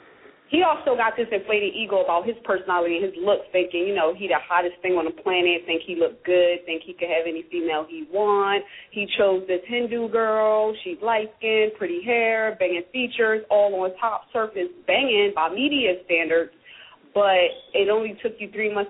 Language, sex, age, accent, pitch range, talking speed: English, female, 30-49, American, 185-240 Hz, 195 wpm